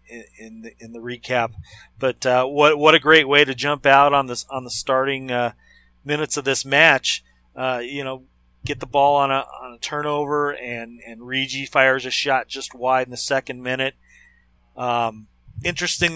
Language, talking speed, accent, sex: English, 185 wpm, American, male